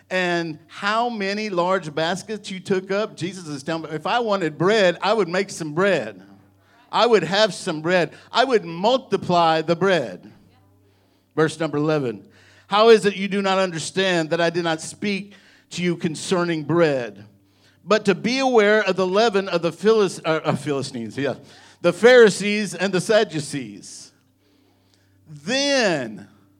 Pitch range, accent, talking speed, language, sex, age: 145-195 Hz, American, 155 wpm, English, male, 50-69